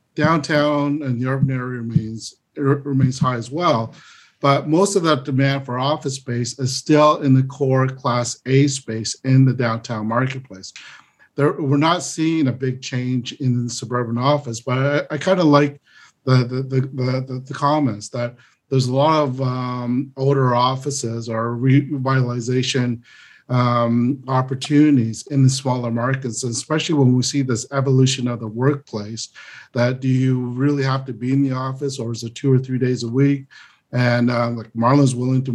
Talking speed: 175 wpm